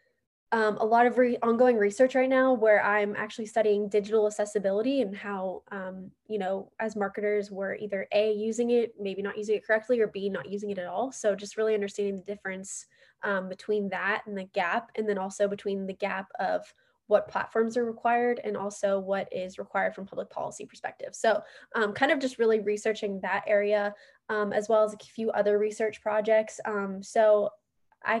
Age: 10-29